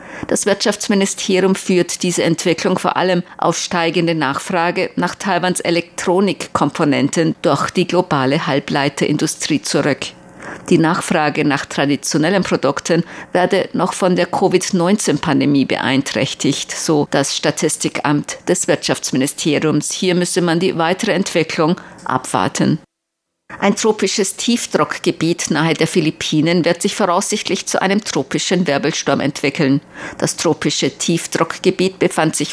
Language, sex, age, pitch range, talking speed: German, female, 50-69, 155-185 Hz, 110 wpm